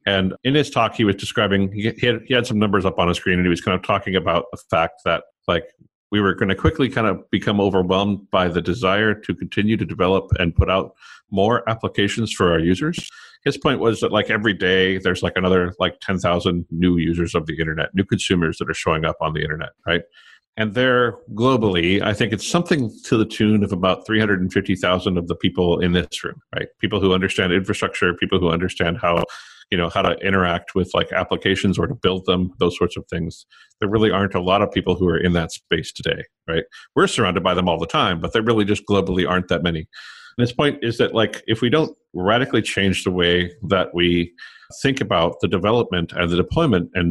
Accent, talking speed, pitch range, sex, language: American, 220 wpm, 90-110 Hz, male, English